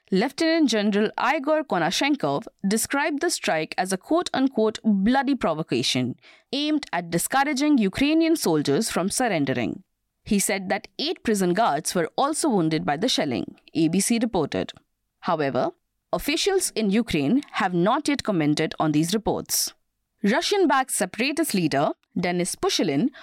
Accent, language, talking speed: Indian, English, 125 wpm